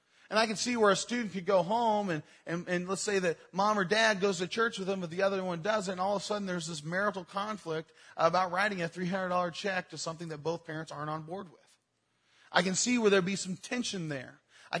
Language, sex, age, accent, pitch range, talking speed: English, male, 30-49, American, 165-210 Hz, 250 wpm